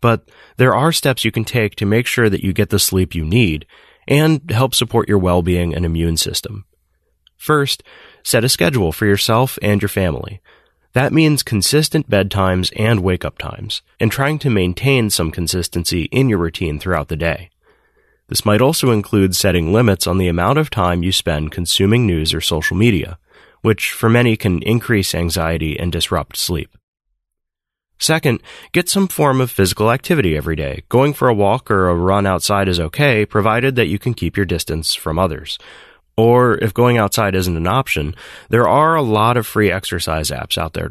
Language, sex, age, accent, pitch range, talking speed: English, male, 30-49, American, 85-120 Hz, 185 wpm